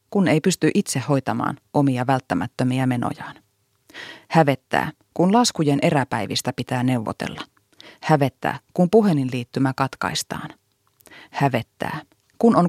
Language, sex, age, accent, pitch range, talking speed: Finnish, female, 30-49, native, 125-165 Hz, 105 wpm